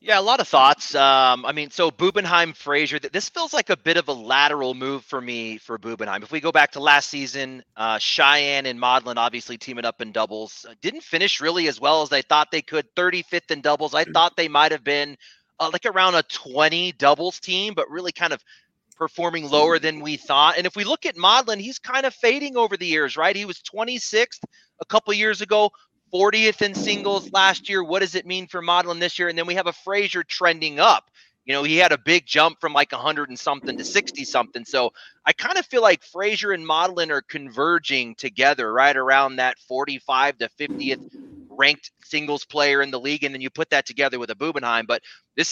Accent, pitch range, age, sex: American, 135-175 Hz, 30-49, male